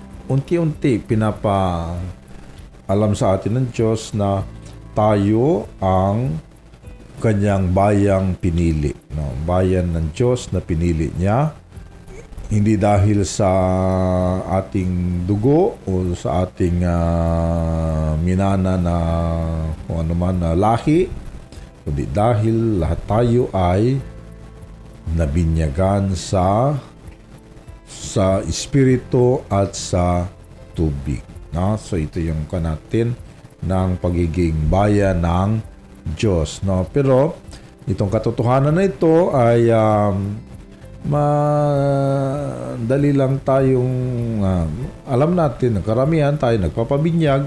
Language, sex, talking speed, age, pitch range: Filipino, male, 95 wpm, 50-69, 90-120 Hz